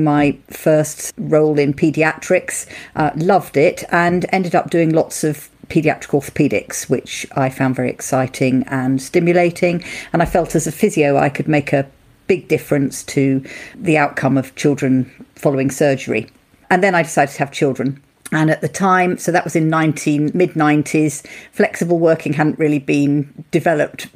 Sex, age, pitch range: female, 50-69, 145-175 Hz